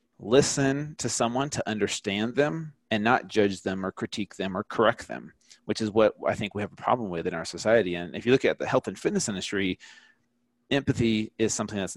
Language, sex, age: English, male, 30-49